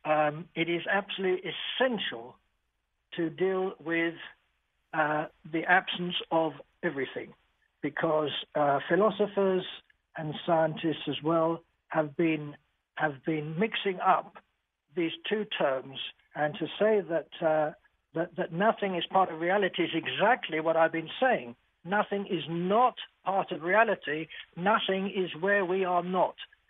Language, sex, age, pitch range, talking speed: English, male, 60-79, 160-200 Hz, 135 wpm